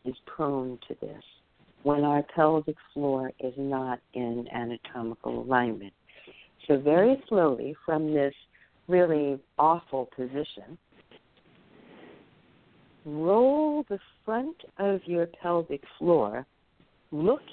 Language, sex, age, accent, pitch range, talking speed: English, female, 60-79, American, 145-185 Hz, 100 wpm